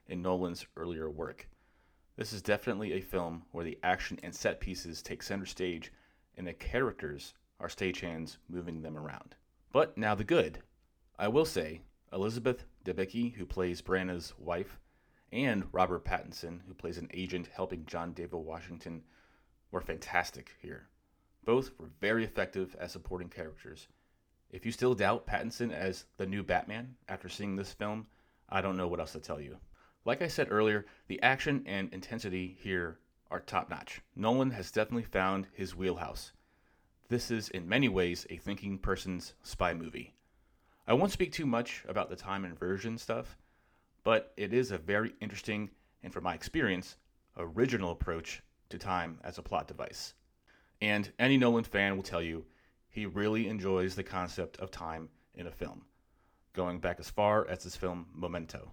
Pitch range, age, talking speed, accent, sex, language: 85-105 Hz, 30-49, 165 wpm, American, male, English